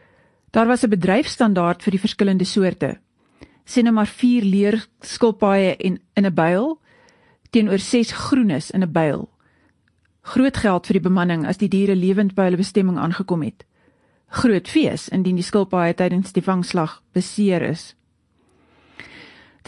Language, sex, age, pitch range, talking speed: English, female, 40-59, 185-230 Hz, 145 wpm